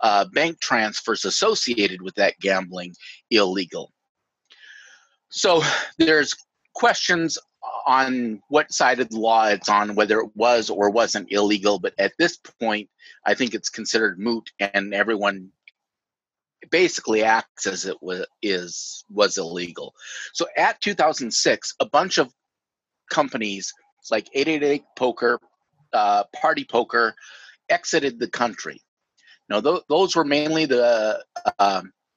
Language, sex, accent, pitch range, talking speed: English, male, American, 100-150 Hz, 125 wpm